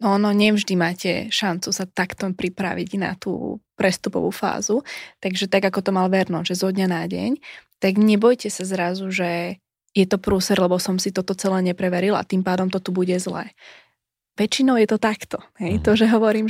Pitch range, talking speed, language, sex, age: 185-215 Hz, 185 wpm, Slovak, female, 20-39